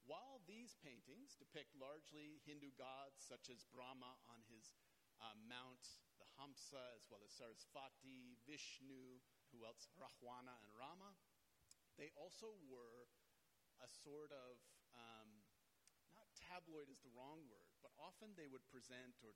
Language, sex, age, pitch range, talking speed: English, male, 40-59, 115-145 Hz, 140 wpm